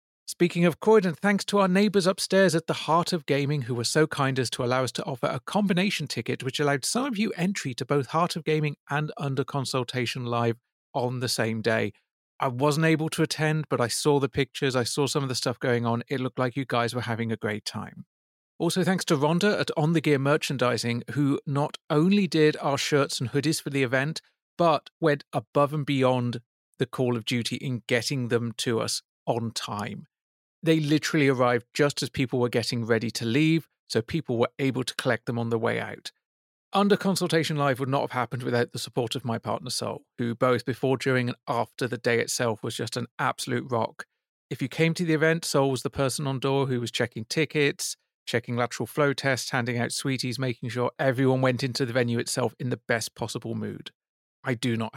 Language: English